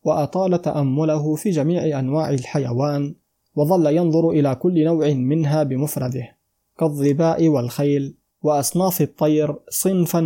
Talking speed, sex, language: 105 wpm, male, Arabic